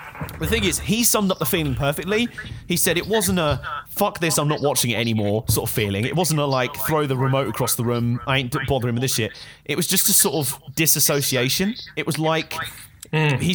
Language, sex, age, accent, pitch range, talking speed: English, male, 30-49, British, 135-180 Hz, 225 wpm